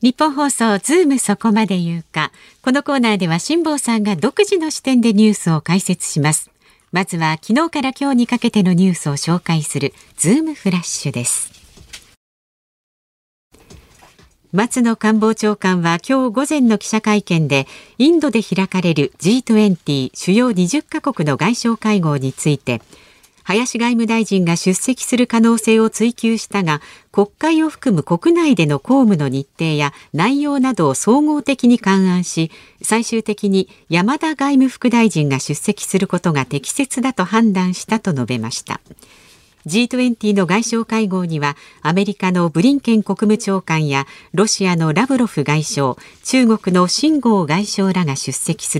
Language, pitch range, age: Japanese, 160-240 Hz, 50-69